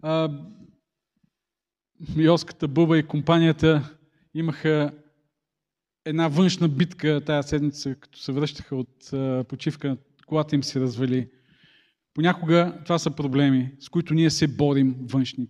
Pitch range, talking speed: 140-175 Hz, 115 wpm